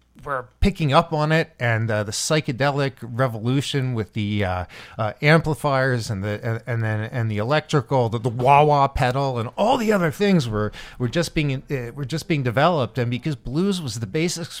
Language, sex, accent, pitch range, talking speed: English, male, American, 115-155 Hz, 195 wpm